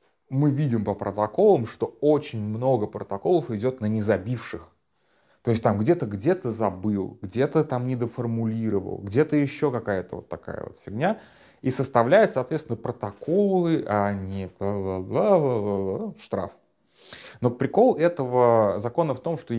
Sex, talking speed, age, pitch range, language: male, 130 wpm, 30-49, 100-125 Hz, Russian